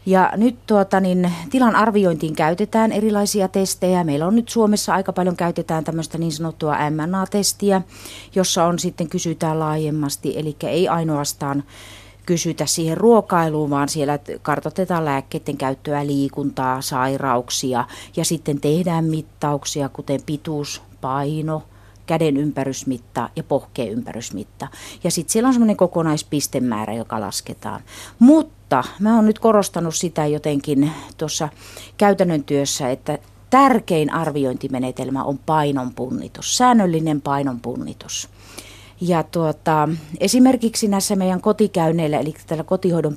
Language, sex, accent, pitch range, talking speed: Finnish, female, native, 140-190 Hz, 115 wpm